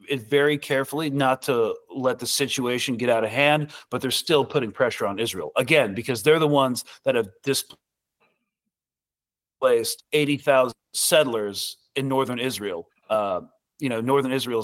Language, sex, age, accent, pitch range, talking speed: Swedish, male, 40-59, American, 115-145 Hz, 150 wpm